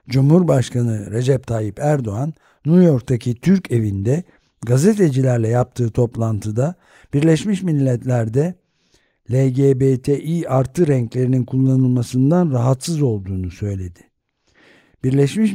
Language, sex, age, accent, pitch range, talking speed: Turkish, male, 60-79, native, 120-160 Hz, 80 wpm